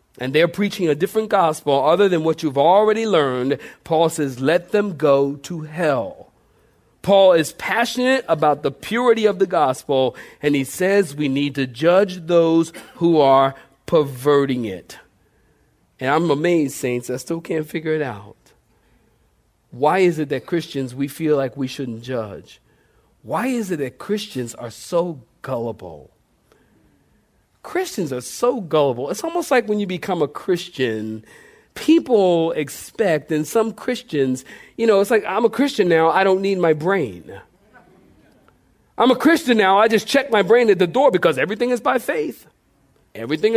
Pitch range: 140-210 Hz